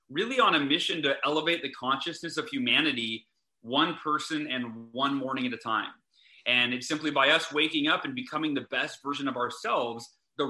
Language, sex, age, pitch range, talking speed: English, male, 30-49, 130-170 Hz, 190 wpm